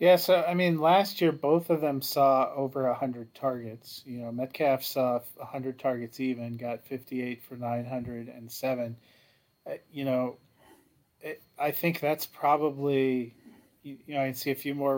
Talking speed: 180 wpm